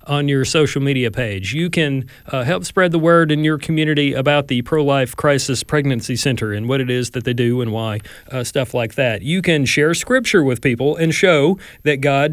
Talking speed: 215 wpm